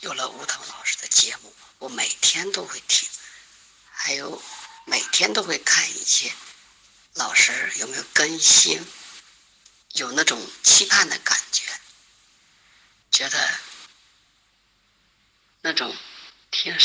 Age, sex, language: 50-69, female, Chinese